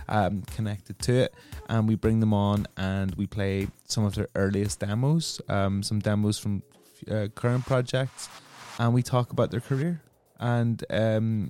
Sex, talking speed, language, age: male, 165 wpm, English, 20-39